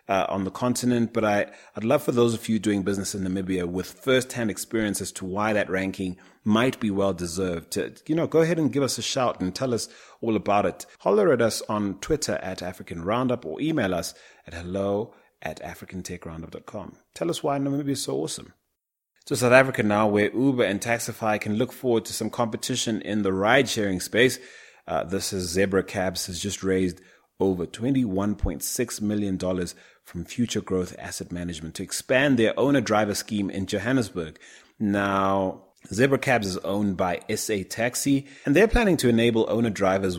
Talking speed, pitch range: 180 wpm, 90-110 Hz